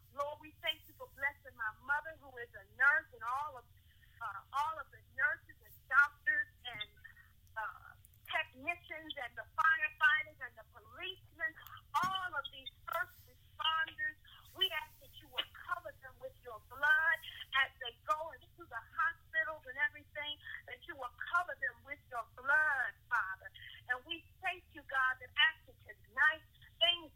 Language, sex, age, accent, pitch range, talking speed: English, female, 40-59, American, 265-340 Hz, 160 wpm